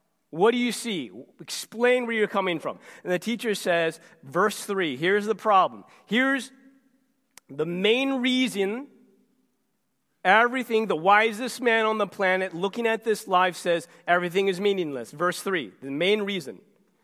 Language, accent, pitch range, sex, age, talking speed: English, American, 165-225 Hz, male, 30-49, 150 wpm